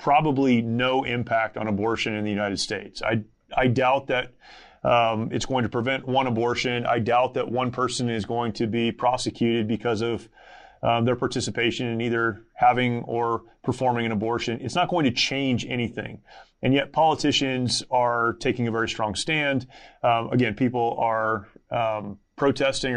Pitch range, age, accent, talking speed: 115-135 Hz, 30-49, American, 165 wpm